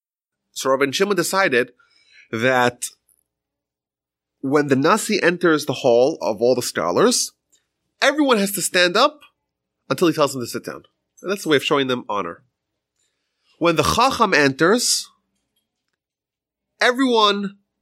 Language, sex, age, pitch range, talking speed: English, male, 30-49, 125-190 Hz, 140 wpm